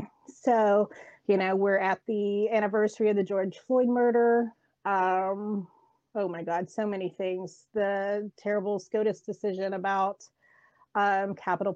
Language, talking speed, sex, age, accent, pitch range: English, 135 wpm, female, 30-49, American, 195-235 Hz